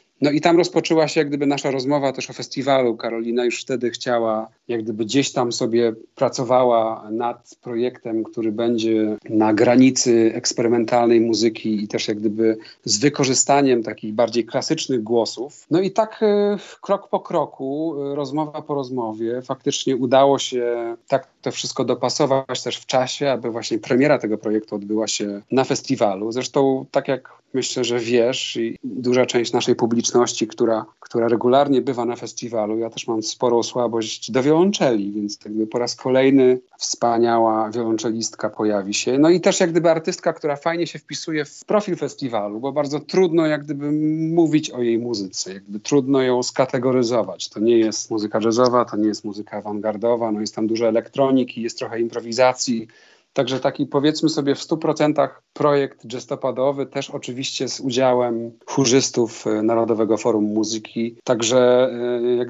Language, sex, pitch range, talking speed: Polish, male, 115-140 Hz, 155 wpm